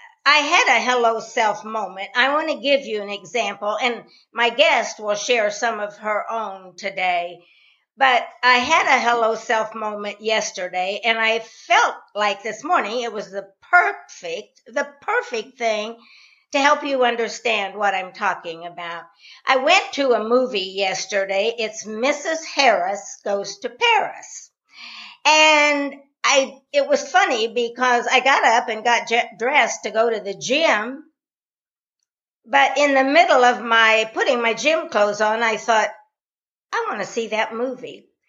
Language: English